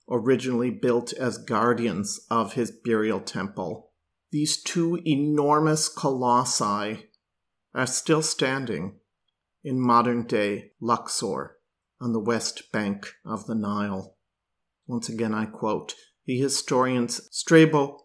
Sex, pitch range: male, 115-140 Hz